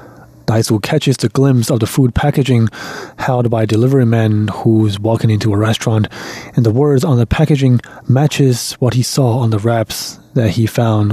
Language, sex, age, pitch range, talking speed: English, male, 30-49, 115-140 Hz, 190 wpm